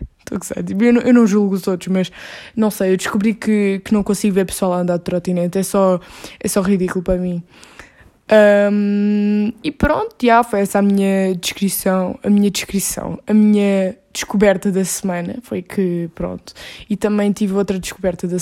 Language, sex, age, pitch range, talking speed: Portuguese, female, 20-39, 190-225 Hz, 175 wpm